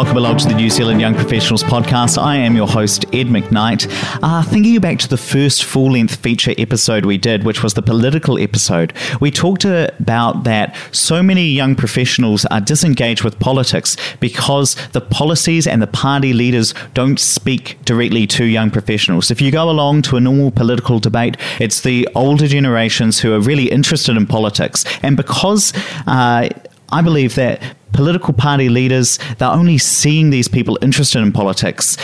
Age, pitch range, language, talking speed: 30-49, 115-145 Hz, English, 170 wpm